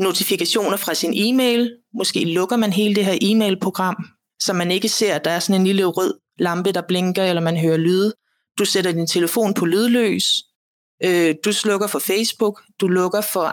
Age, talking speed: 30-49, 190 wpm